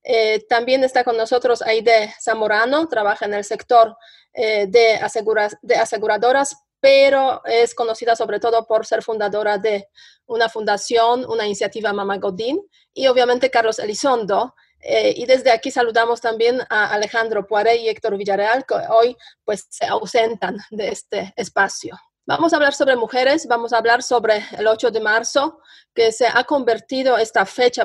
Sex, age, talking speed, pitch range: female, 30-49, 155 wpm, 215-250 Hz